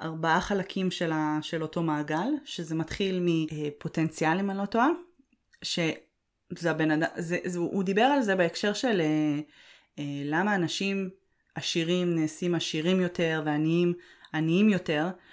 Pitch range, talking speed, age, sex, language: 155-185 Hz, 125 wpm, 20-39, female, Hebrew